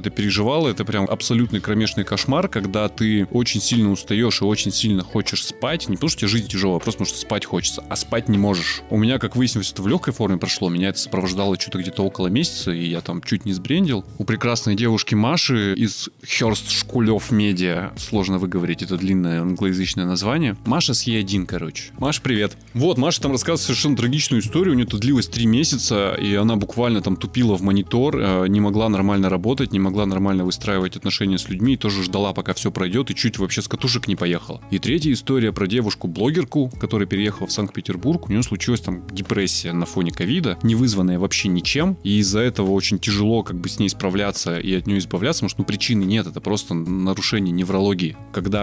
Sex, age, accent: male, 20-39, native